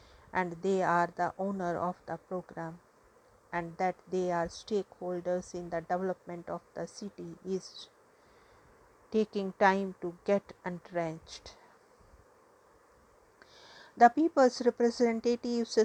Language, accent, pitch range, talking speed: English, Indian, 185-220 Hz, 105 wpm